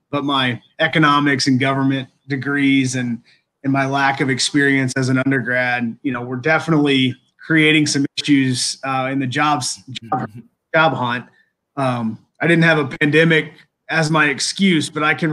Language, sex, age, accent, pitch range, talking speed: English, male, 30-49, American, 130-150 Hz, 160 wpm